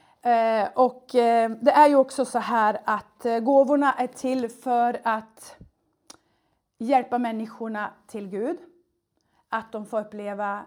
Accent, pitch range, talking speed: Swedish, 215-260 Hz, 135 wpm